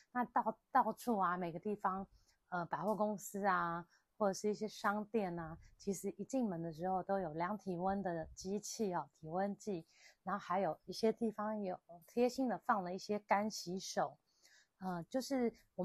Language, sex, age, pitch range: Chinese, female, 30-49, 170-215 Hz